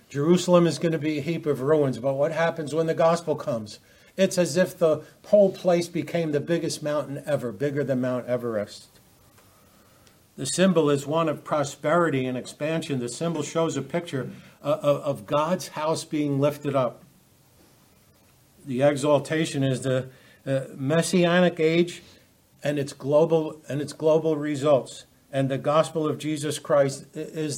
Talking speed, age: 150 wpm, 60-79